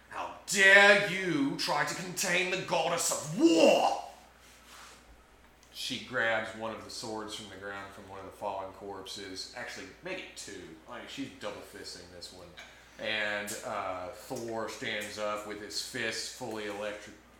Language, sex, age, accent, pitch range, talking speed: English, male, 30-49, American, 95-115 Hz, 150 wpm